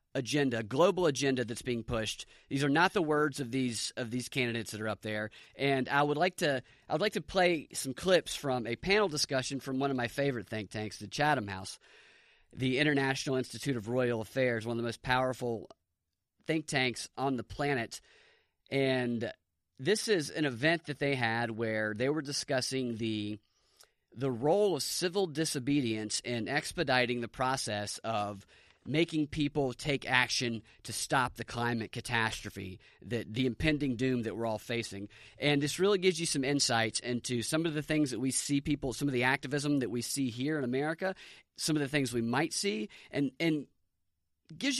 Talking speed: 185 wpm